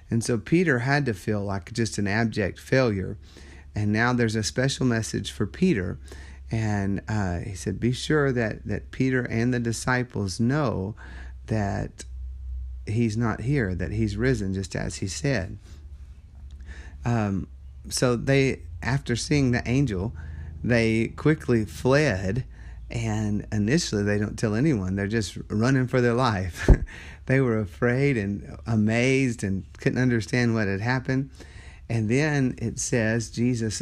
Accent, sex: American, male